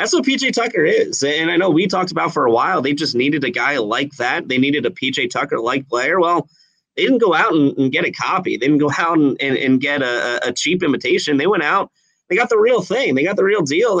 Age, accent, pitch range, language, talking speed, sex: 30-49, American, 130-180 Hz, English, 270 wpm, male